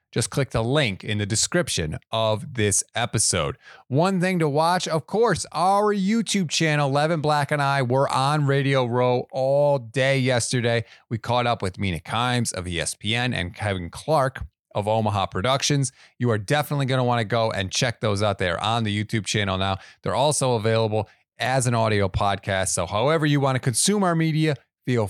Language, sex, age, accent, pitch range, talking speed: English, male, 30-49, American, 110-155 Hz, 185 wpm